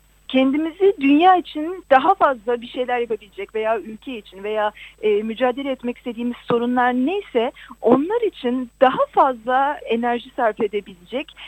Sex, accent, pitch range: female, native, 225-320 Hz